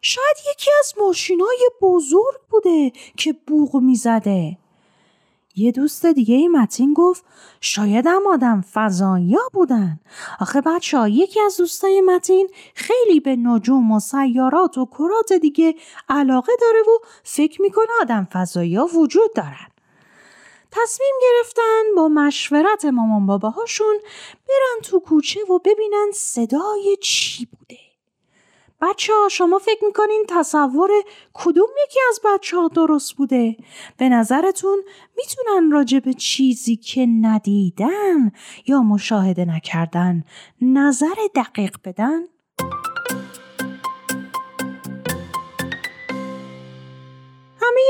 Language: Persian